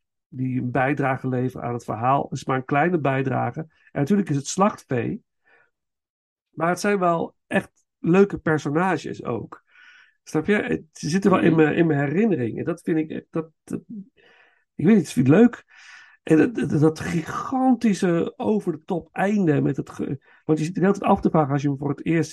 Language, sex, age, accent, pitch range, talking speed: Dutch, male, 50-69, Dutch, 140-190 Hz, 190 wpm